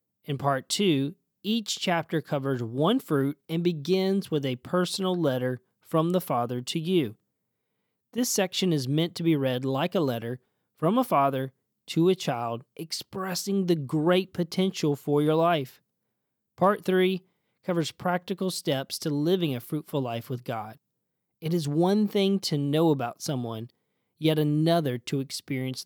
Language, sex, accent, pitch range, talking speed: English, male, American, 135-180 Hz, 155 wpm